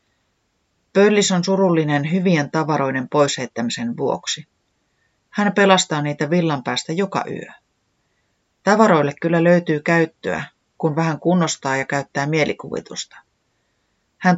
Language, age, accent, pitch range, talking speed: Finnish, 30-49, native, 140-185 Hz, 105 wpm